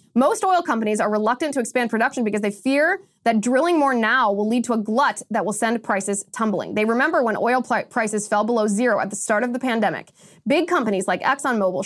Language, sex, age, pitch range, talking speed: English, female, 20-39, 205-250 Hz, 220 wpm